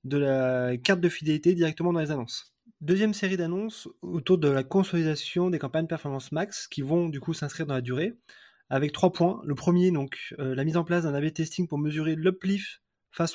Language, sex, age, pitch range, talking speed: French, male, 20-39, 150-185 Hz, 205 wpm